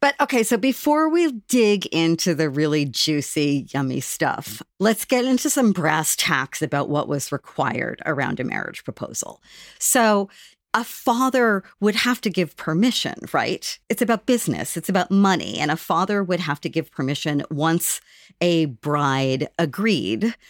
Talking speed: 155 wpm